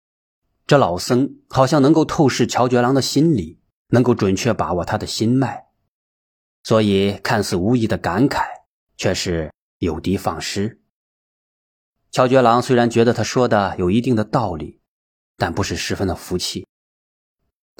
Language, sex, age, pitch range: Chinese, male, 30-49, 90-120 Hz